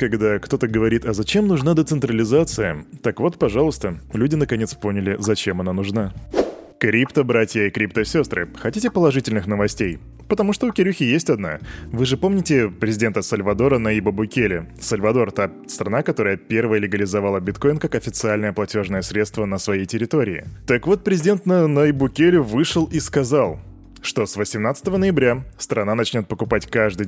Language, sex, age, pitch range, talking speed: Russian, male, 20-39, 105-145 Hz, 145 wpm